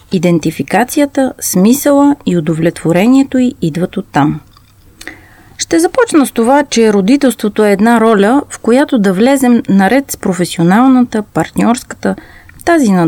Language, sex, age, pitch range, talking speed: Bulgarian, female, 30-49, 175-260 Hz, 120 wpm